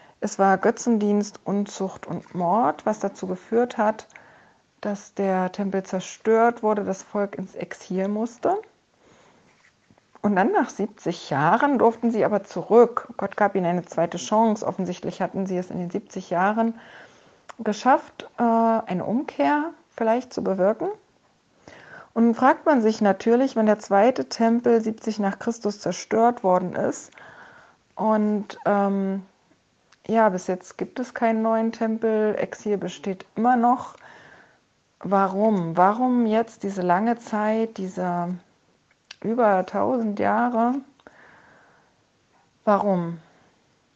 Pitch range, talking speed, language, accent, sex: 190-235 Hz, 120 wpm, German, German, female